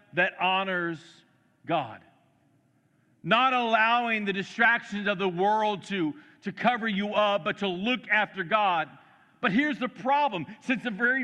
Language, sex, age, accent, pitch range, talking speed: English, male, 50-69, American, 190-235 Hz, 145 wpm